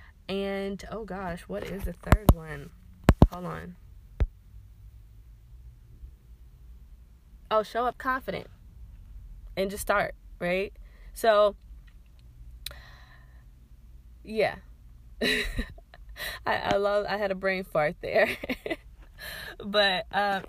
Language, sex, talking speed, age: English, female, 90 wpm, 20-39